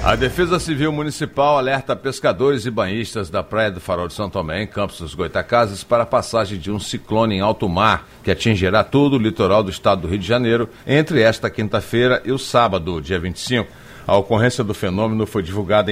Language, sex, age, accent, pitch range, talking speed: Portuguese, male, 60-79, Brazilian, 95-120 Hz, 200 wpm